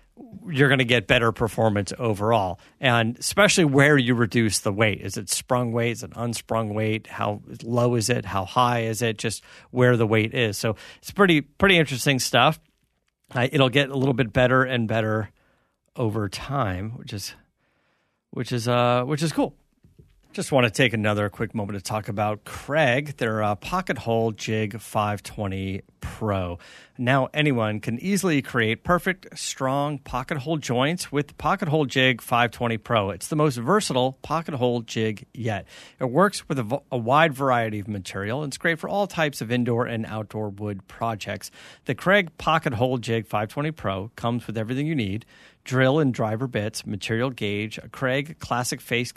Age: 40-59